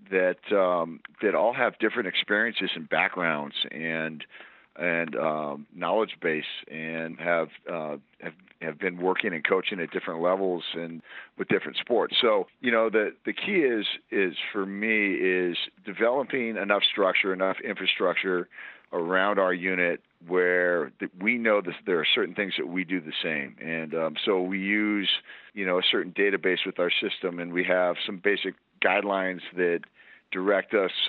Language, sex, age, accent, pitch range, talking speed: English, male, 50-69, American, 85-100 Hz, 165 wpm